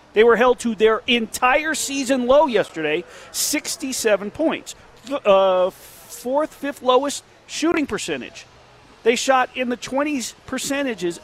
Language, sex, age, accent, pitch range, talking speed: English, male, 40-59, American, 205-255 Hz, 125 wpm